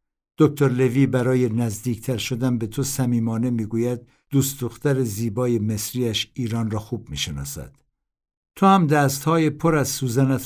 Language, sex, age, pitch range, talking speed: Persian, male, 60-79, 100-130 Hz, 130 wpm